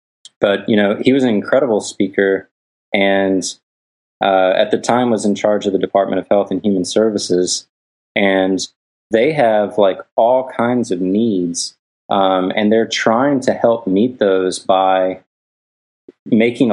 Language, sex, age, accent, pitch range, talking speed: English, male, 20-39, American, 90-105 Hz, 150 wpm